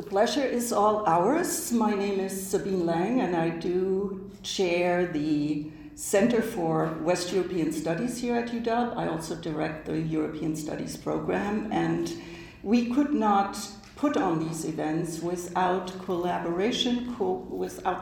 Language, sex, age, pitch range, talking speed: English, female, 60-79, 165-215 Hz, 135 wpm